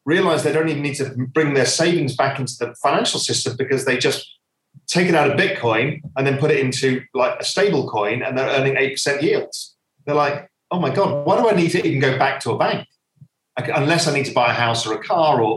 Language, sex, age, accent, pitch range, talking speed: English, male, 40-59, British, 125-160 Hz, 245 wpm